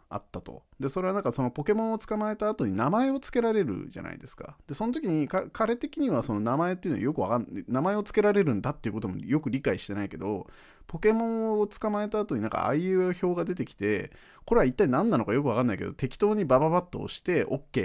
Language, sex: Japanese, male